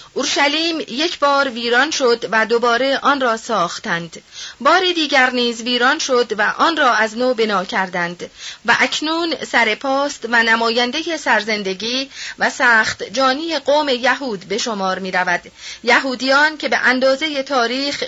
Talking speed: 140 wpm